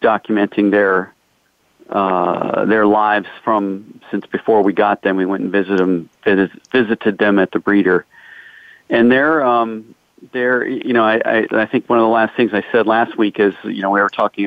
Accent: American